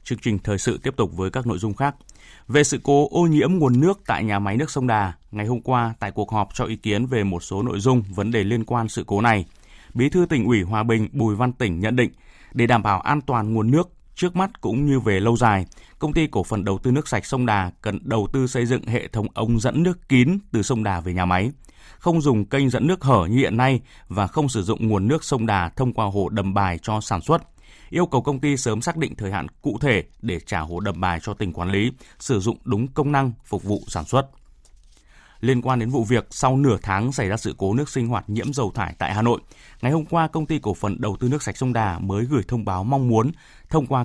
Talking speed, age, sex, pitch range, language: 265 wpm, 20-39, male, 100-130 Hz, Vietnamese